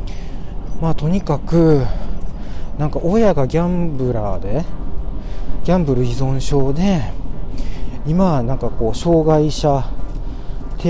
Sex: male